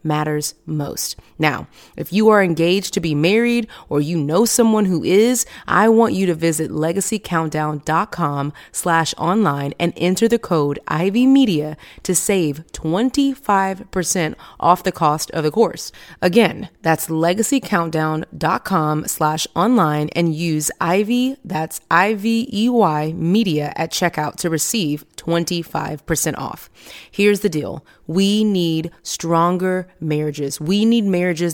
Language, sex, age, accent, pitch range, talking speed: English, female, 30-49, American, 160-205 Hz, 120 wpm